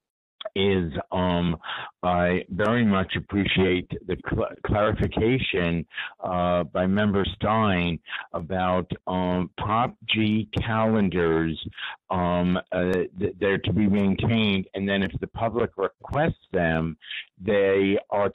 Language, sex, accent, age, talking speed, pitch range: English, male, American, 50-69, 110 wpm, 95-110 Hz